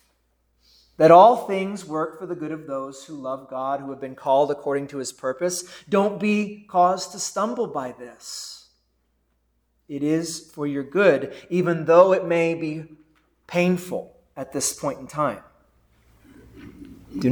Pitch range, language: 130-180 Hz, English